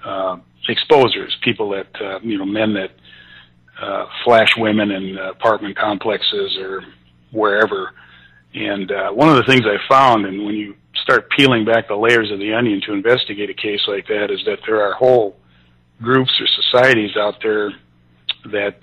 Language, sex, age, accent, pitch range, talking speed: English, male, 50-69, American, 100-120 Hz, 170 wpm